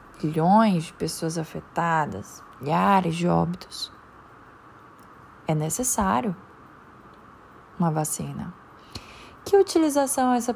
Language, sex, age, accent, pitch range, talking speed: Portuguese, female, 20-39, Brazilian, 175-230 Hz, 80 wpm